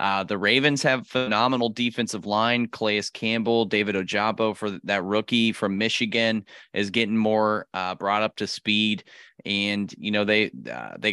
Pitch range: 100-115 Hz